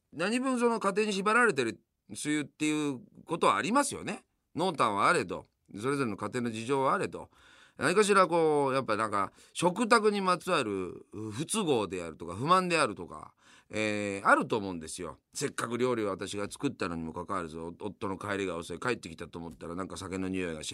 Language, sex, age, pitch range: Japanese, male, 40-59, 90-150 Hz